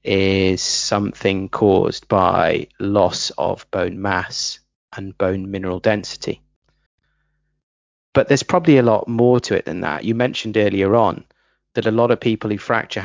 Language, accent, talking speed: English, British, 150 wpm